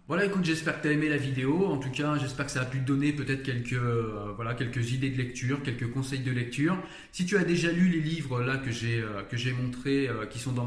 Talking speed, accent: 275 wpm, French